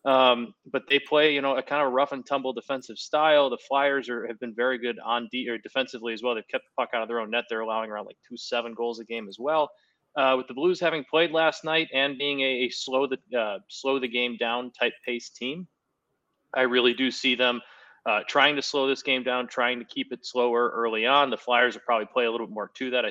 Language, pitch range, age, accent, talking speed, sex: English, 120-140 Hz, 30-49, American, 260 wpm, male